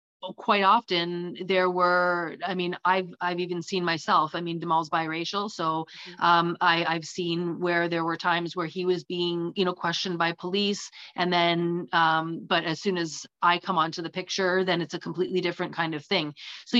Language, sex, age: English, female, 30-49